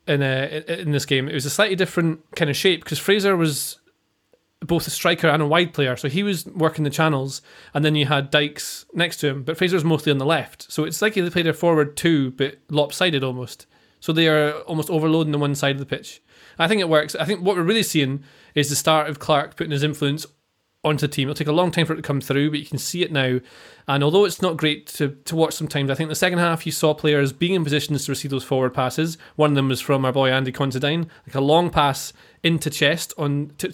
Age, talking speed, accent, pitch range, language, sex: 20-39, 255 wpm, British, 140-165 Hz, English, male